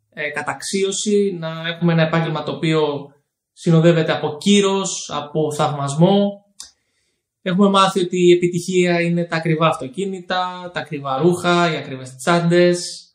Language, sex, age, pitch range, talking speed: Greek, male, 20-39, 160-205 Hz, 125 wpm